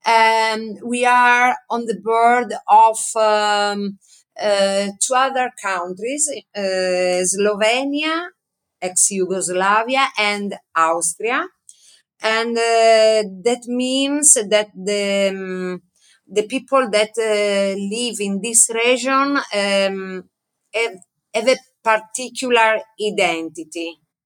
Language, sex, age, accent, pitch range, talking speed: English, female, 30-49, Italian, 190-230 Hz, 95 wpm